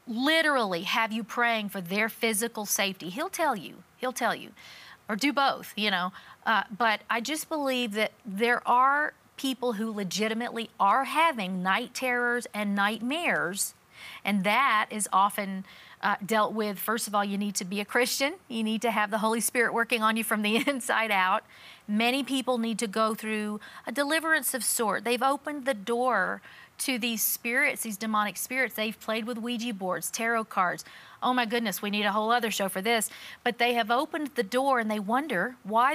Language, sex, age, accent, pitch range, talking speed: English, female, 40-59, American, 215-265 Hz, 190 wpm